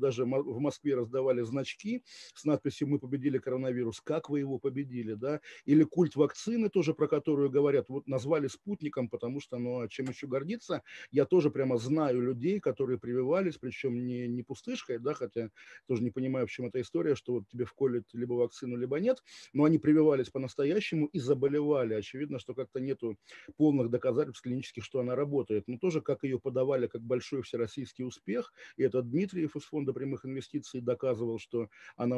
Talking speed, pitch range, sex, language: 175 wpm, 120-145 Hz, male, Russian